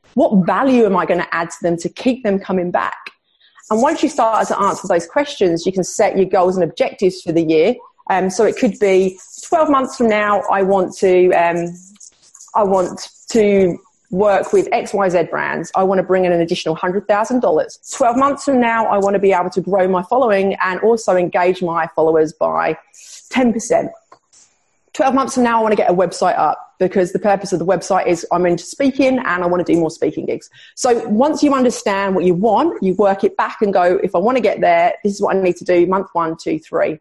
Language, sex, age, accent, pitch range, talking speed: English, female, 30-49, British, 180-255 Hz, 220 wpm